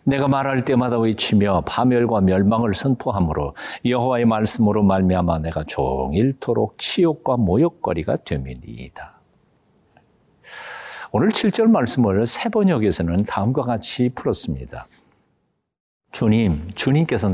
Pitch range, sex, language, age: 90-145 Hz, male, Korean, 50-69